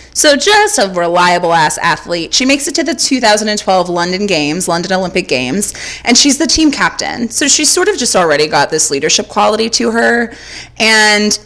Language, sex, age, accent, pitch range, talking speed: English, female, 20-39, American, 175-235 Hz, 185 wpm